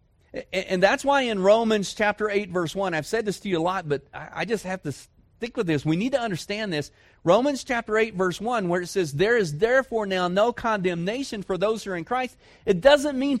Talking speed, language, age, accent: 235 wpm, English, 40-59, American